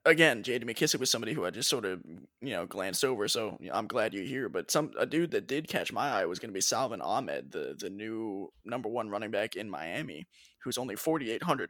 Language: English